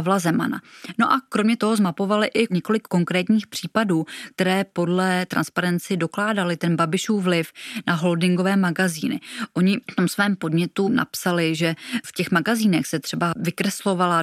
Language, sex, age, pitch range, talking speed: Czech, female, 20-39, 165-195 Hz, 140 wpm